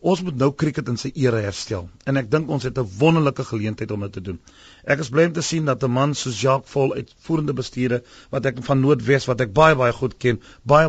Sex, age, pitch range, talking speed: male, 40-59, 125-165 Hz, 240 wpm